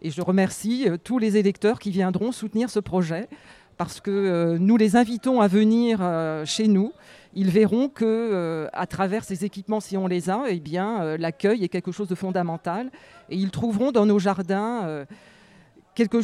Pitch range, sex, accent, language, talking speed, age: 185-235 Hz, female, French, French, 175 wpm, 40-59